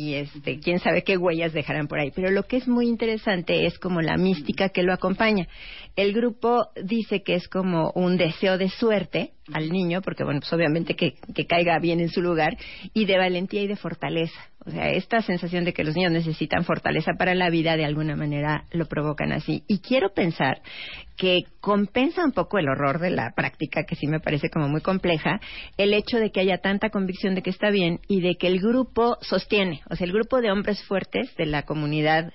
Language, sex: Spanish, female